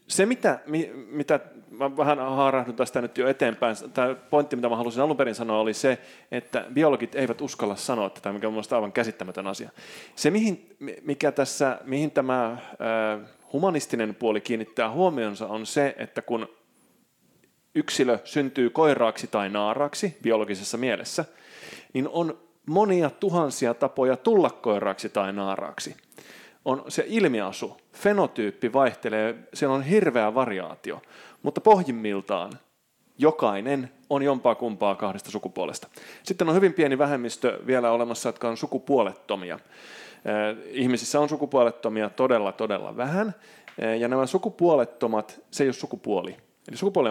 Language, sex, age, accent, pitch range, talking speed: Finnish, male, 30-49, native, 110-150 Hz, 130 wpm